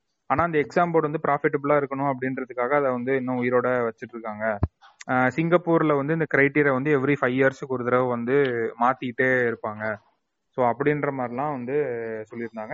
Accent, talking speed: native, 150 wpm